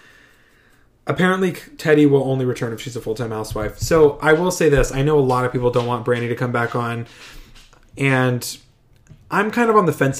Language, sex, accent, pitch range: English, male, American, 125-150 Hz